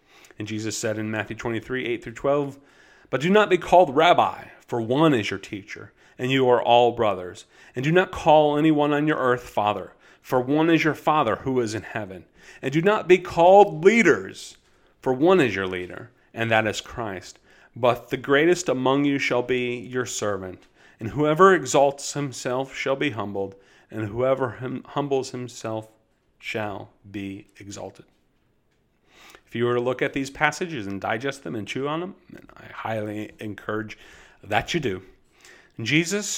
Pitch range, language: 115-145 Hz, English